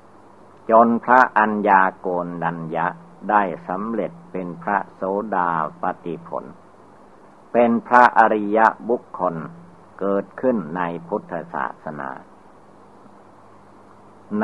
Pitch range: 90-110 Hz